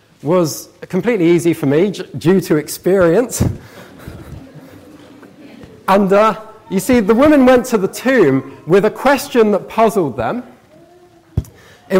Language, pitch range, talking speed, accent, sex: English, 145-220 Hz, 125 wpm, British, male